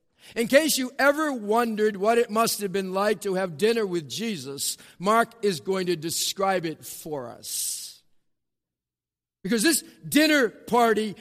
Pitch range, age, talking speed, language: 170-225 Hz, 50-69, 150 wpm, English